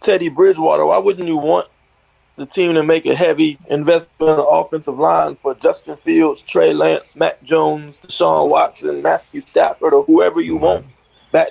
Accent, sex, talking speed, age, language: American, male, 170 wpm, 20-39, English